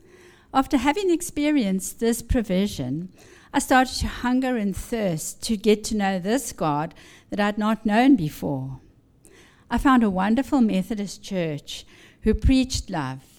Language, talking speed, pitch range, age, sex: English, 145 wpm, 175-235 Hz, 50-69, female